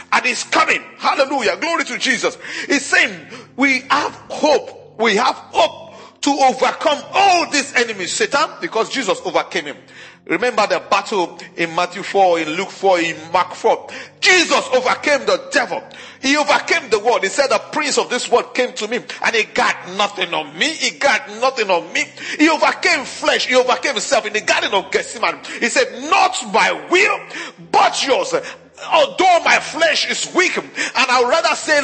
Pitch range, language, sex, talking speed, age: 240-335 Hz, English, male, 175 wpm, 40-59